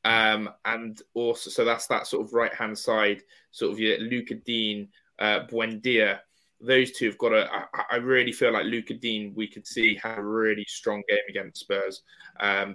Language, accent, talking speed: English, British, 195 wpm